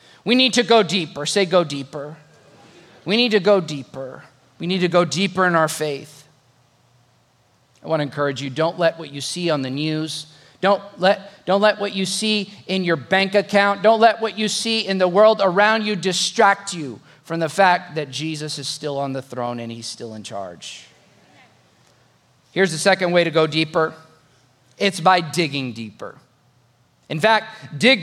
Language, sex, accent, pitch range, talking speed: English, male, American, 135-195 Hz, 180 wpm